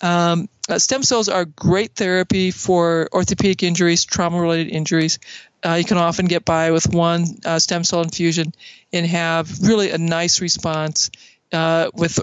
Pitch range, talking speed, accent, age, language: 160-180 Hz, 155 wpm, American, 50-69, English